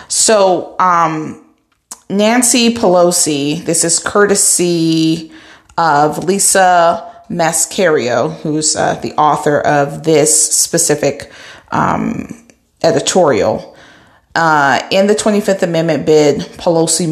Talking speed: 90 wpm